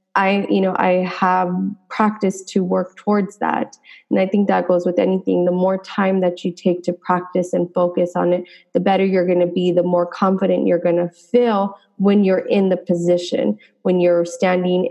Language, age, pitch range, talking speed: English, 20-39, 175-205 Hz, 200 wpm